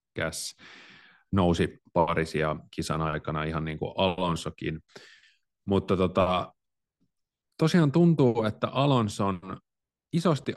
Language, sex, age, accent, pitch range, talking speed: Finnish, male, 30-49, native, 80-105 Hz, 90 wpm